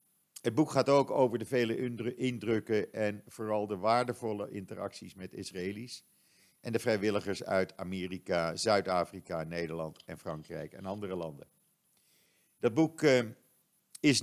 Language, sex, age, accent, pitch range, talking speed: Dutch, male, 50-69, Dutch, 100-130 Hz, 125 wpm